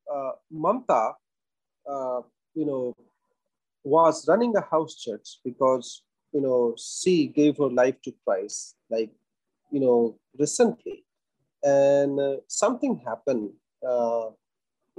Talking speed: 110 wpm